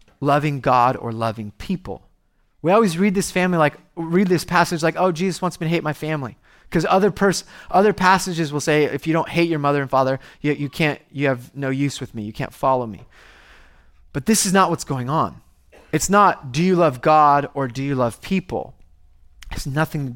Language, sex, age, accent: English, male, 20-39, American